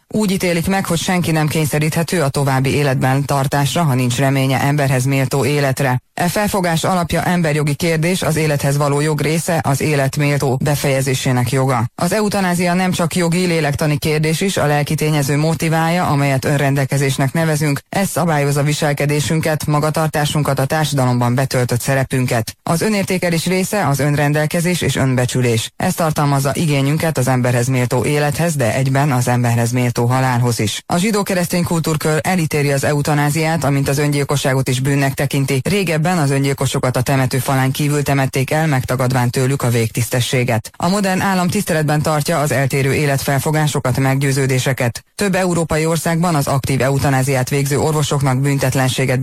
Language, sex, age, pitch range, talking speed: Hungarian, female, 20-39, 135-160 Hz, 145 wpm